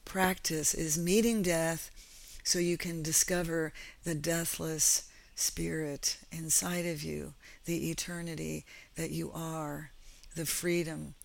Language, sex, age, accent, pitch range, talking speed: English, female, 50-69, American, 160-180 Hz, 110 wpm